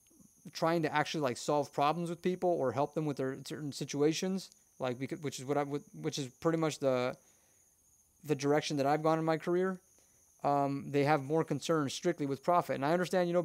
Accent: American